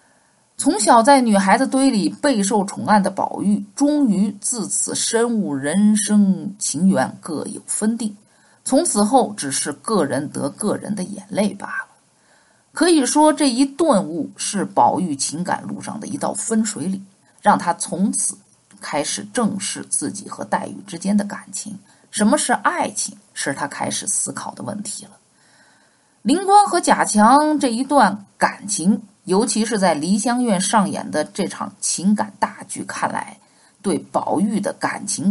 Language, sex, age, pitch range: Chinese, female, 50-69, 205-270 Hz